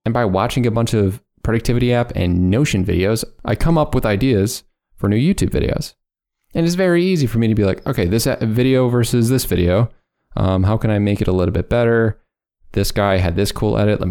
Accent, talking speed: American, 220 wpm